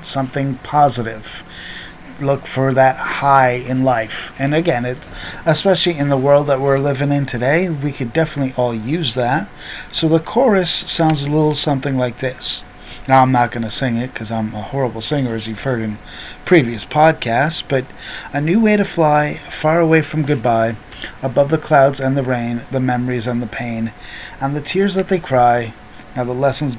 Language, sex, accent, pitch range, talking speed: English, male, American, 120-155 Hz, 185 wpm